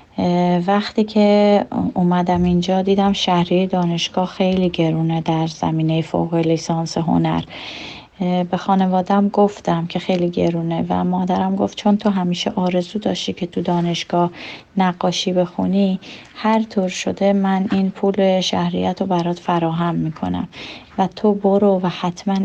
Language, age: Persian, 30-49